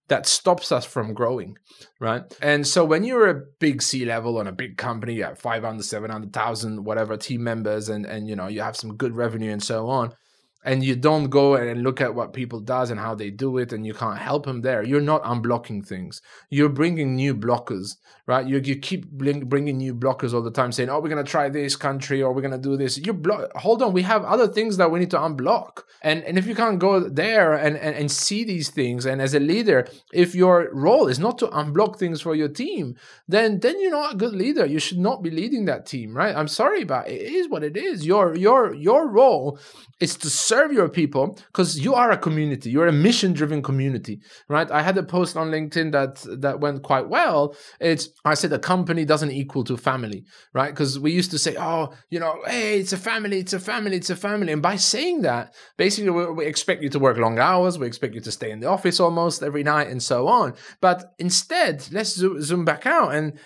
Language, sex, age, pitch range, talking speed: English, male, 20-39, 130-180 Hz, 235 wpm